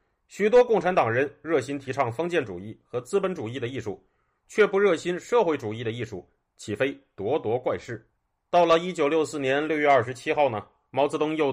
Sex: male